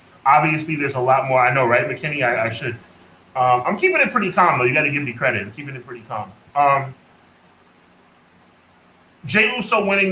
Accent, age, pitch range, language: American, 30-49, 120-175 Hz, English